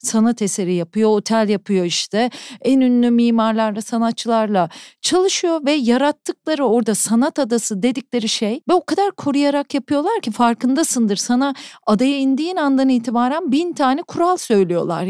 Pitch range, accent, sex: 215-275 Hz, native, female